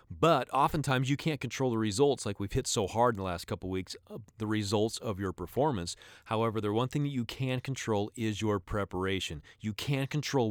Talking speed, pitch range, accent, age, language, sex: 205 wpm, 100-125 Hz, American, 30-49, English, male